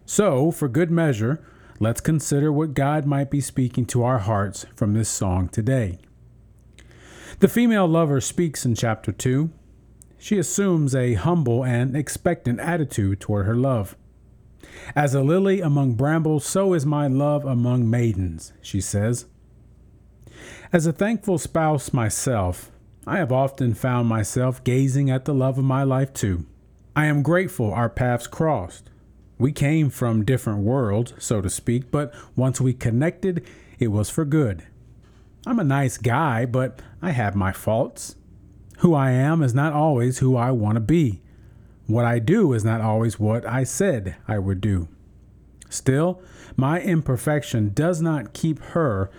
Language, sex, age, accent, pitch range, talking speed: English, male, 40-59, American, 110-150 Hz, 155 wpm